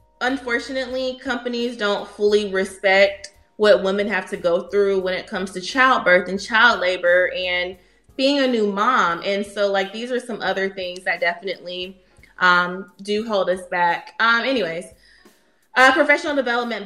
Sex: female